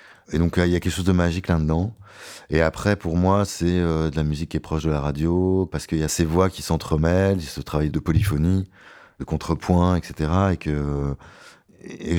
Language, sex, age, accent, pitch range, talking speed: French, male, 30-49, French, 70-80 Hz, 220 wpm